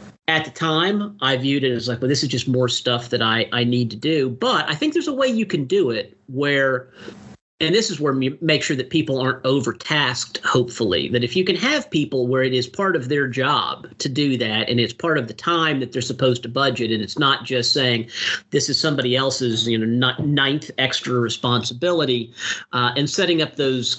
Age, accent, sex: 40-59, American, male